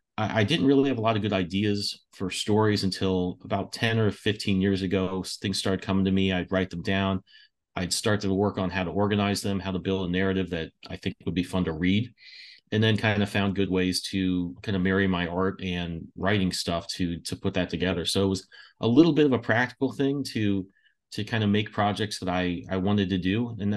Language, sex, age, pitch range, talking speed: English, male, 30-49, 90-105 Hz, 235 wpm